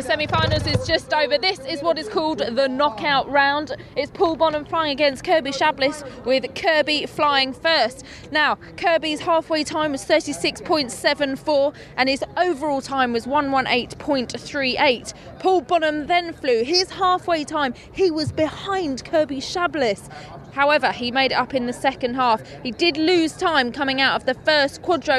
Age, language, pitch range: 20-39, English, 255-310 Hz